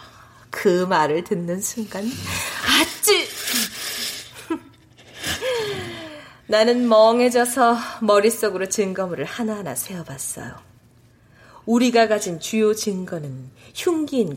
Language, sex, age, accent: Korean, female, 30-49, native